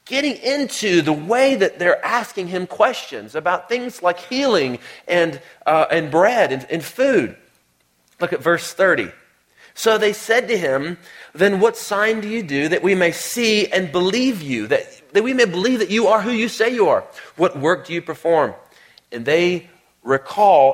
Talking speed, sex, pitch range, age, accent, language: 180 wpm, male, 135-190 Hz, 40-59, American, English